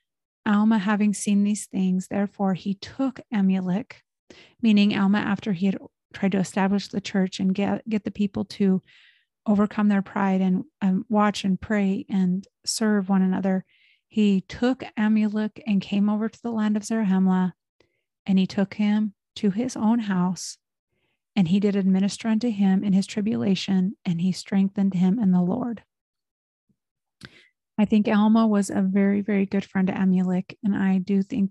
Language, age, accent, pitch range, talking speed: English, 30-49, American, 190-215 Hz, 165 wpm